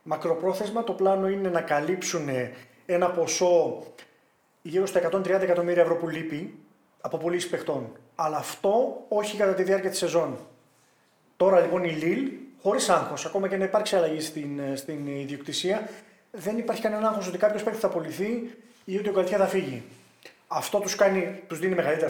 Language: Greek